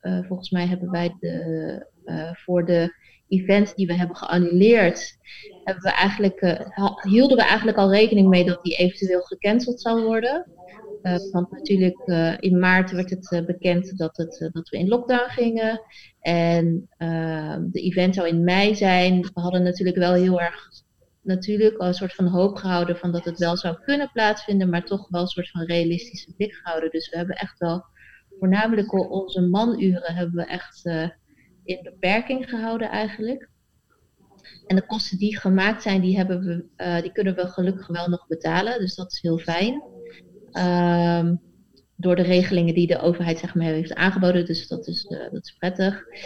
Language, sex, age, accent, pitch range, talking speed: Dutch, female, 30-49, Dutch, 175-195 Hz, 180 wpm